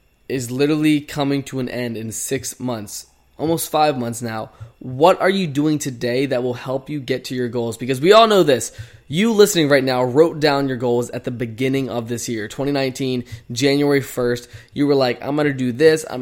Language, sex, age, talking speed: English, male, 20-39, 210 wpm